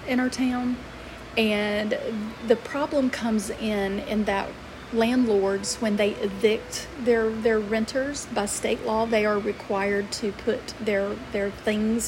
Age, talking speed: 40-59, 140 wpm